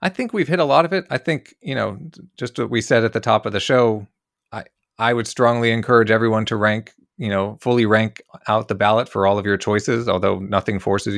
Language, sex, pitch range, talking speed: English, male, 95-115 Hz, 240 wpm